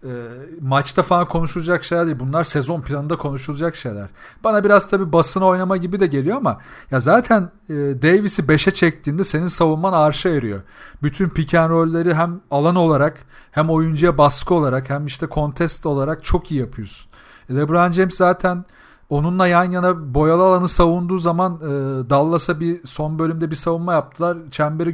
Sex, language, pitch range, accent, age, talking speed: male, Turkish, 150-190 Hz, native, 40-59, 160 wpm